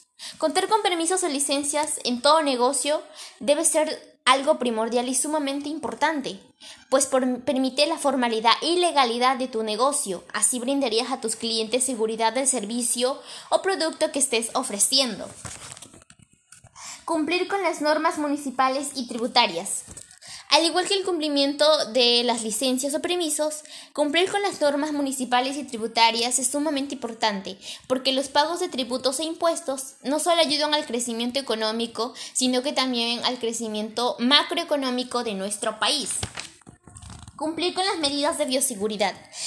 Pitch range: 240-300 Hz